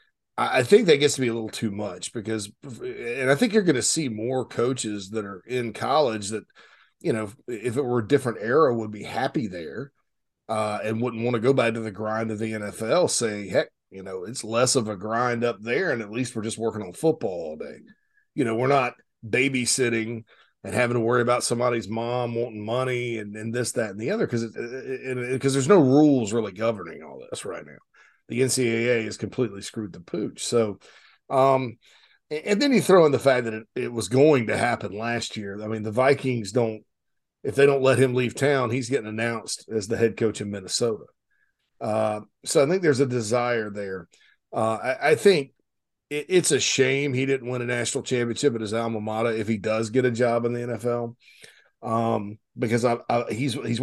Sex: male